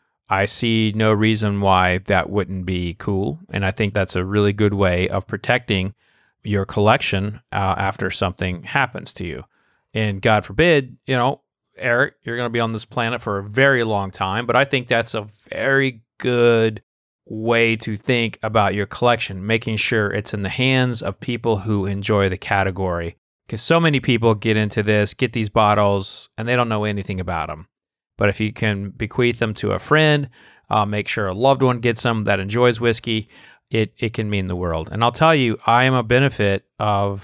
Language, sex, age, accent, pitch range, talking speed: English, male, 30-49, American, 100-120 Hz, 195 wpm